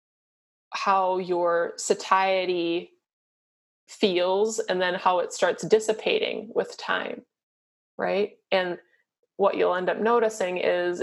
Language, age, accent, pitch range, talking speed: English, 20-39, American, 180-225 Hz, 110 wpm